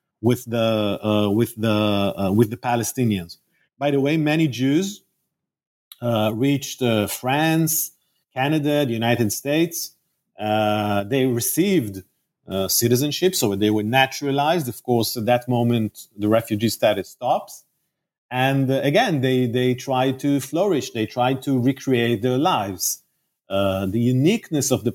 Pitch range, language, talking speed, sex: 110-140 Hz, English, 140 wpm, male